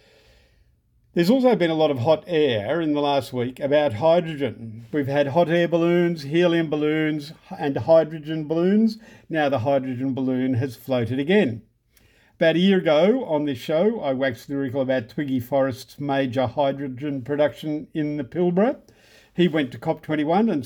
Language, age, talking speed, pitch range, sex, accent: English, 50-69, 160 wpm, 135-170 Hz, male, Australian